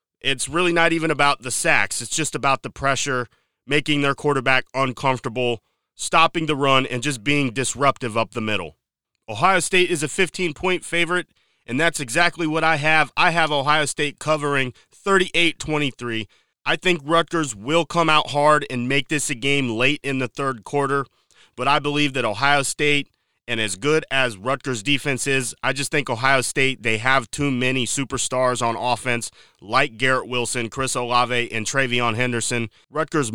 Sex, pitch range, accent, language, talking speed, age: male, 125-155 Hz, American, English, 175 wpm, 30-49